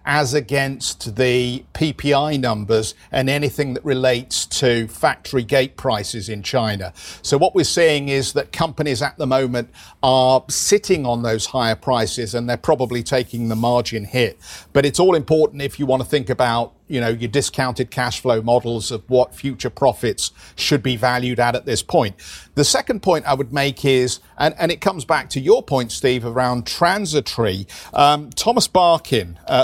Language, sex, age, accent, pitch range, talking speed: English, male, 50-69, British, 120-150 Hz, 180 wpm